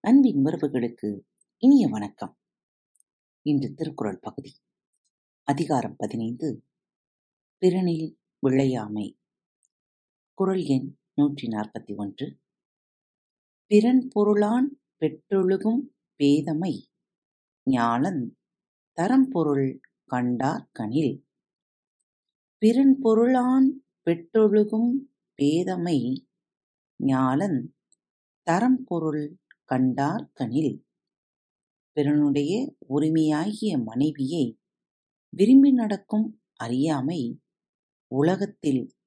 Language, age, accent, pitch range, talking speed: Tamil, 50-69, native, 135-210 Hz, 45 wpm